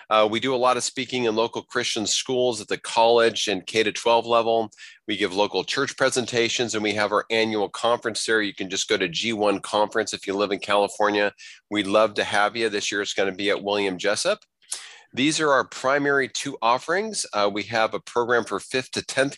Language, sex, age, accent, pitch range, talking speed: English, male, 40-59, American, 105-120 Hz, 215 wpm